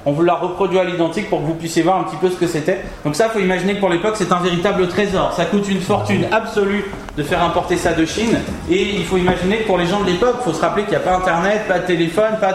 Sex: male